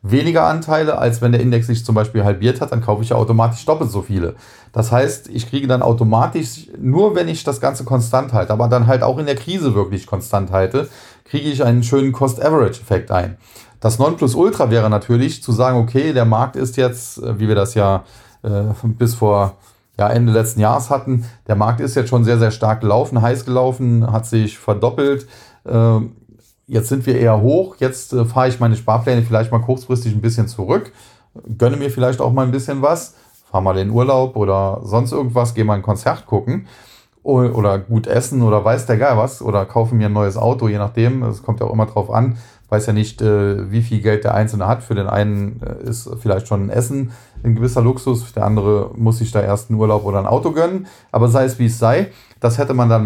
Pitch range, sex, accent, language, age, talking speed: 110-125 Hz, male, German, German, 30-49, 215 wpm